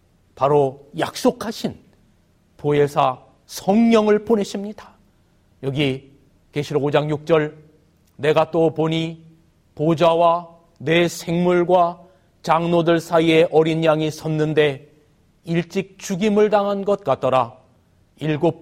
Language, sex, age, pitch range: Korean, male, 40-59, 150-185 Hz